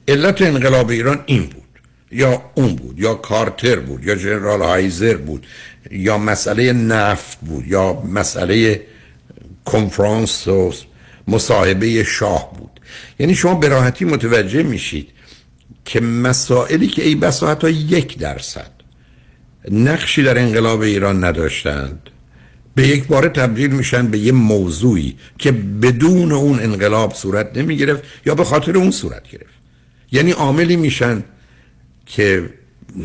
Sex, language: male, Persian